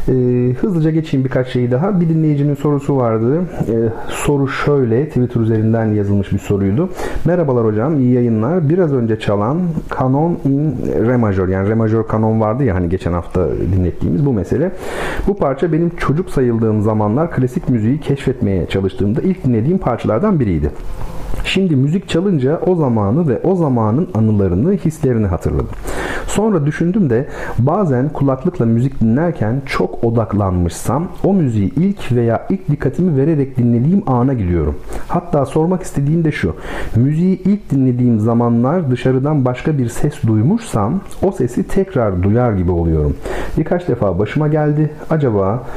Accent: native